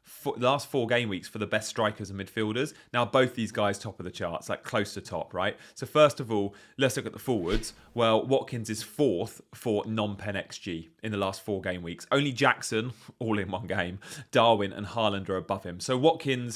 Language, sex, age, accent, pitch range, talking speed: English, male, 30-49, British, 105-135 Hz, 215 wpm